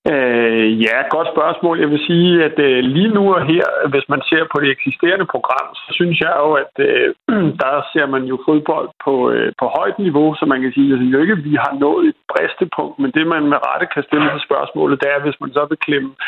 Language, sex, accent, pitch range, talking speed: Danish, male, native, 140-165 Hz, 245 wpm